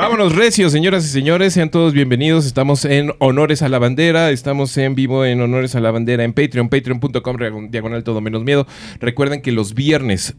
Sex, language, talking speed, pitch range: male, Spanish, 195 wpm, 100-135 Hz